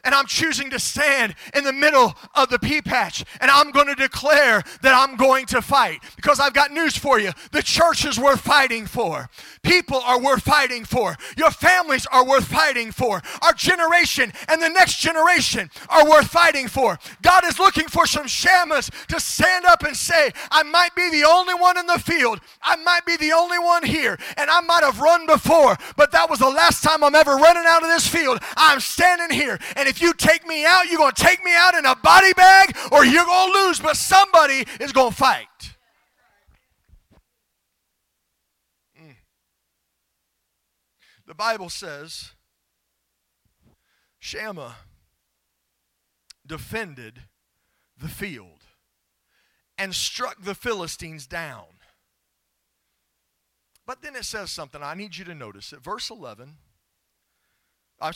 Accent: American